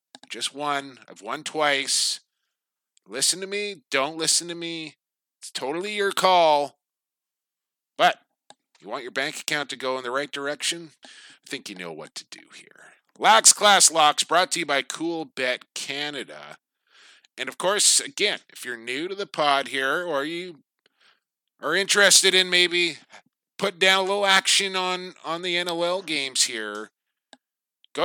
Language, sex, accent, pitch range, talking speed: English, male, American, 145-190 Hz, 160 wpm